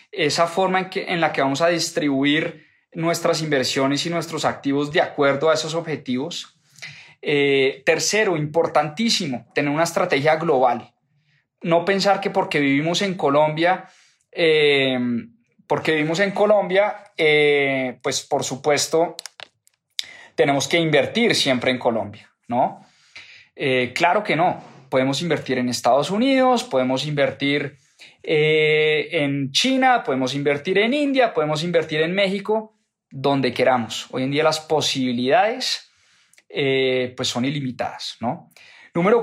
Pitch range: 140-180 Hz